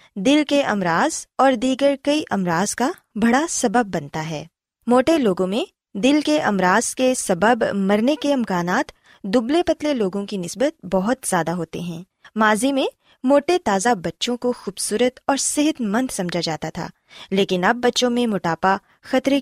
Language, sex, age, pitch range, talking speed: Urdu, female, 20-39, 195-260 Hz, 160 wpm